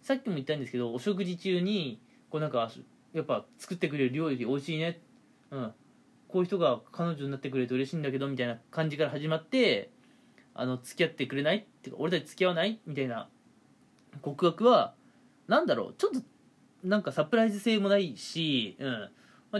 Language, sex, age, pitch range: Japanese, male, 20-39, 145-235 Hz